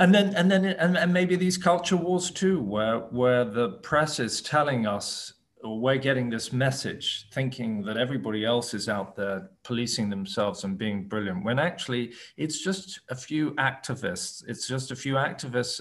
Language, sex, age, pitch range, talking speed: English, male, 40-59, 110-145 Hz, 180 wpm